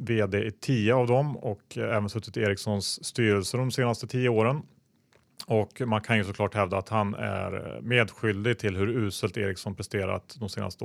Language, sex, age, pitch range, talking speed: Swedish, male, 30-49, 100-120 Hz, 175 wpm